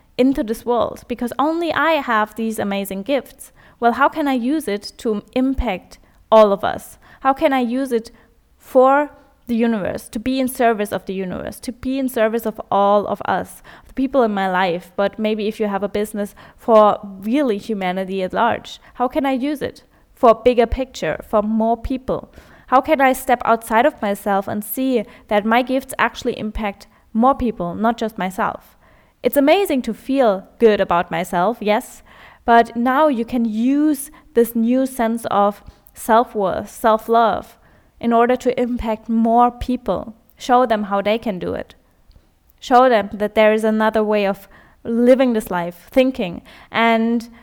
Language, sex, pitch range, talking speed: English, female, 210-255 Hz, 175 wpm